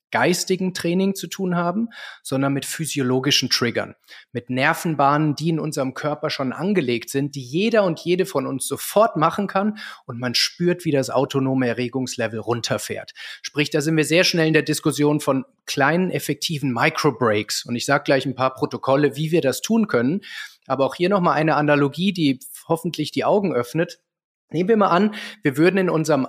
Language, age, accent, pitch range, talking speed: German, 30-49, German, 140-180 Hz, 180 wpm